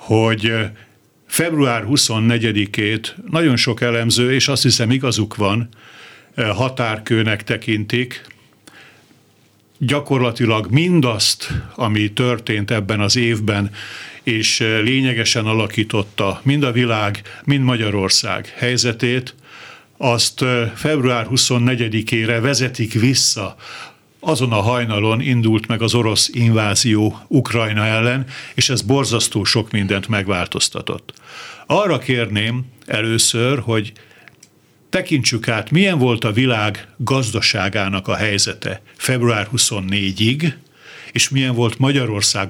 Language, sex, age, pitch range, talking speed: Hungarian, male, 50-69, 110-130 Hz, 95 wpm